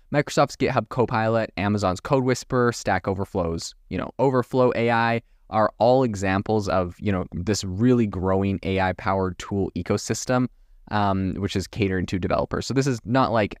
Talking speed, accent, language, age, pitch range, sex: 155 wpm, American, English, 20-39, 95-115 Hz, male